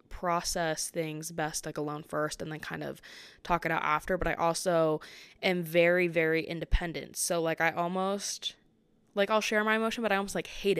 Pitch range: 165-200 Hz